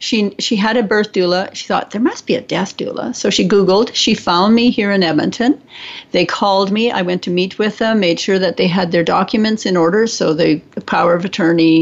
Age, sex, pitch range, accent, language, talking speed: 50-69, female, 175-210 Hz, American, English, 240 wpm